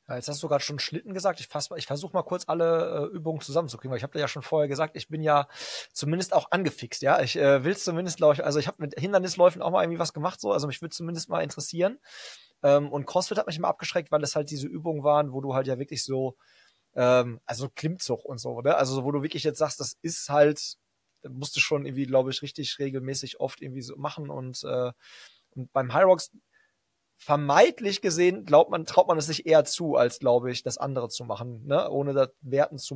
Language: German